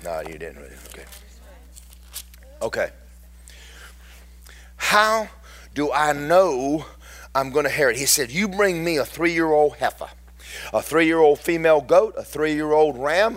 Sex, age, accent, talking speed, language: male, 40-59, American, 130 wpm, English